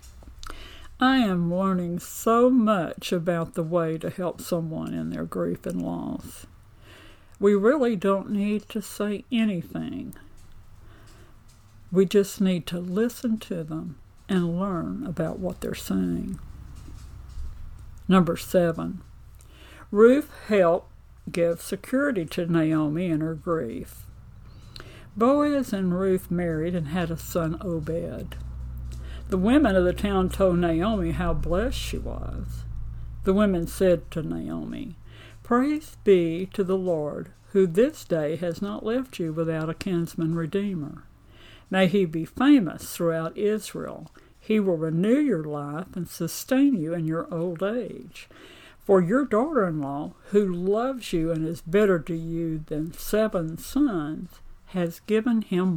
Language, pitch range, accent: English, 150-200 Hz, American